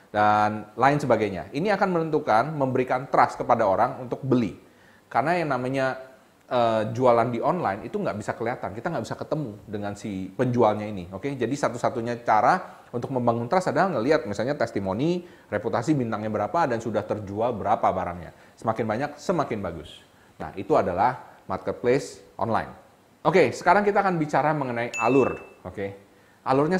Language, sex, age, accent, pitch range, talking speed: Indonesian, male, 30-49, native, 115-160 Hz, 150 wpm